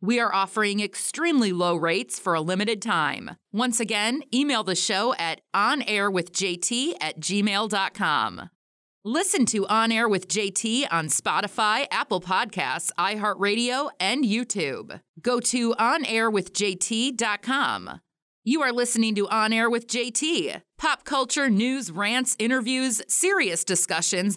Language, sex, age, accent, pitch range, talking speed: English, female, 30-49, American, 185-245 Hz, 125 wpm